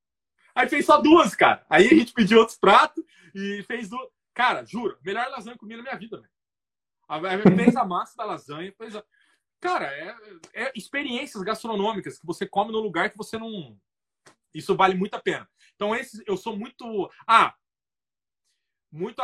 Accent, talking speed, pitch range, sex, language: Brazilian, 175 wpm, 160-230 Hz, male, Portuguese